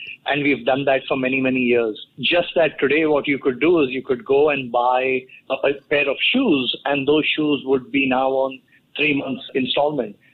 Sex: male